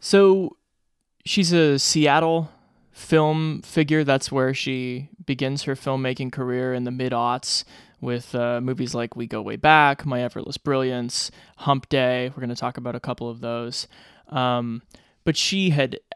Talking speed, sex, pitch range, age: 155 wpm, male, 135-165 Hz, 20-39